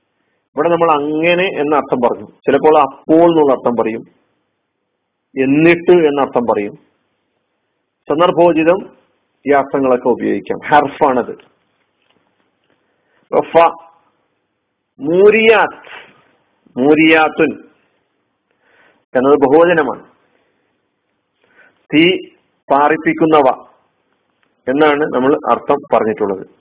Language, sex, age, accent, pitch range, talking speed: Malayalam, male, 50-69, native, 135-175 Hz, 60 wpm